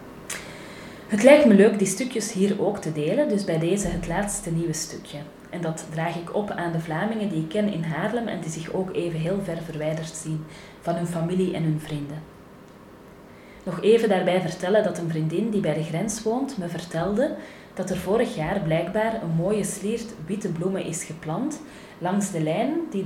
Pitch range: 165-210 Hz